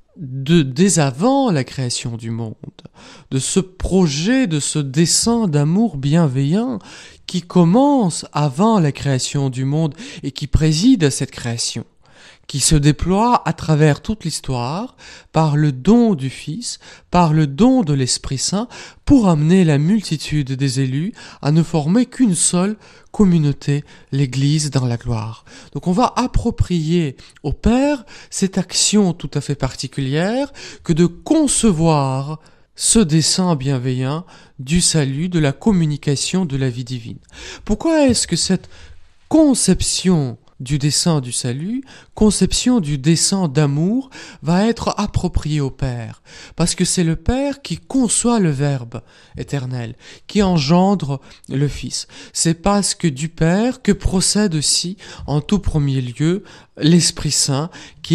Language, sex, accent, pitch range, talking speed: French, male, French, 140-195 Hz, 140 wpm